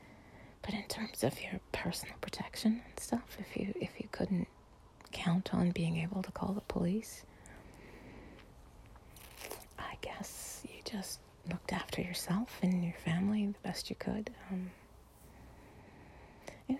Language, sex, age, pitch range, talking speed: English, female, 30-49, 170-200 Hz, 135 wpm